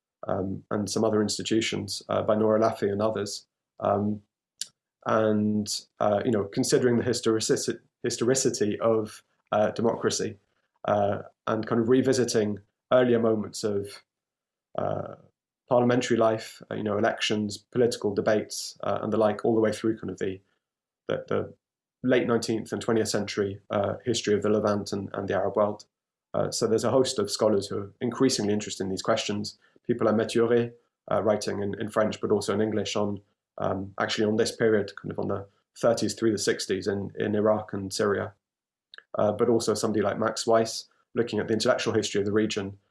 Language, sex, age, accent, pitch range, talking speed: English, male, 30-49, British, 105-115 Hz, 180 wpm